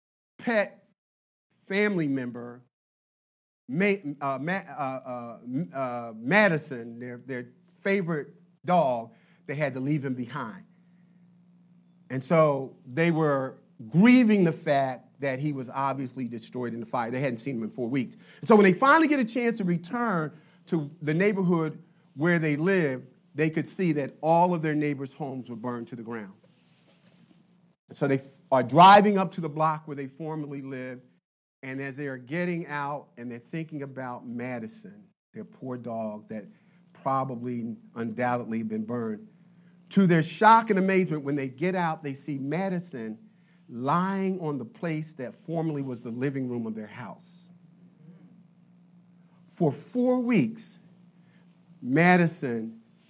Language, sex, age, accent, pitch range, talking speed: English, male, 40-59, American, 135-180 Hz, 150 wpm